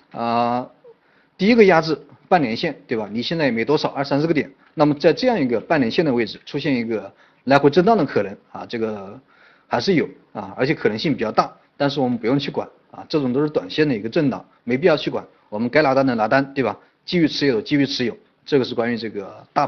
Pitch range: 120-155 Hz